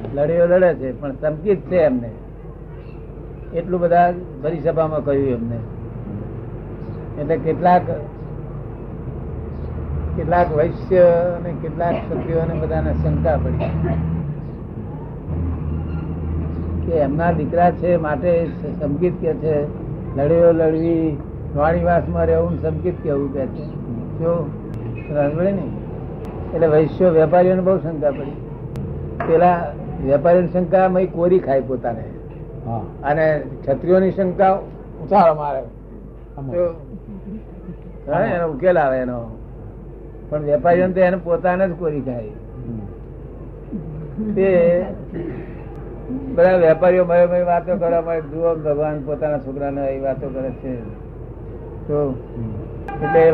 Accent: native